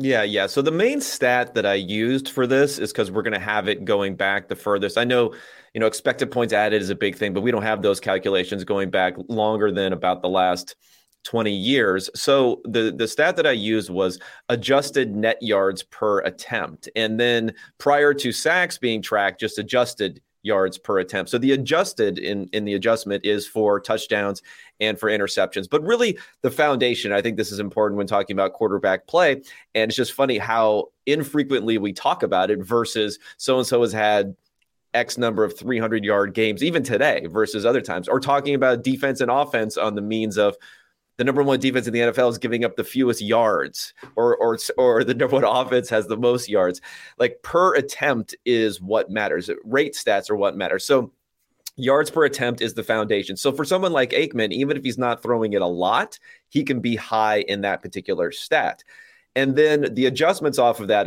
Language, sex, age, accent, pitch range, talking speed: English, male, 30-49, American, 105-130 Hz, 205 wpm